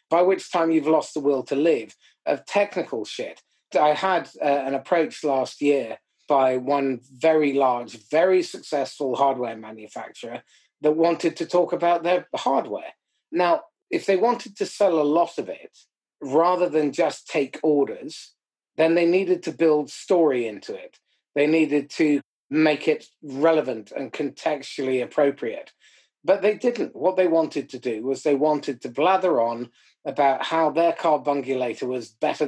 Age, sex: 30-49, male